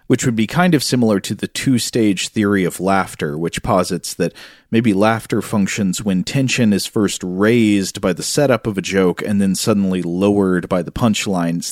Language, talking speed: English, 185 wpm